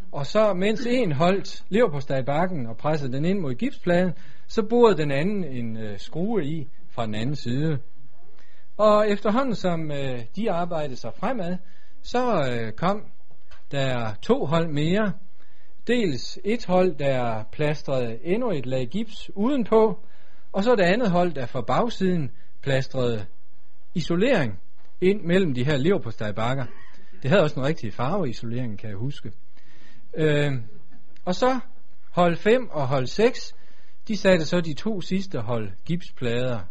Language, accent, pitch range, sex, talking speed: Danish, native, 125-190 Hz, male, 155 wpm